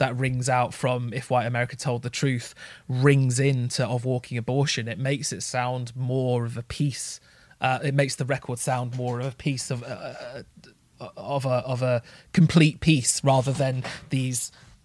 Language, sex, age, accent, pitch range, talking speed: English, male, 20-39, British, 125-150 Hz, 180 wpm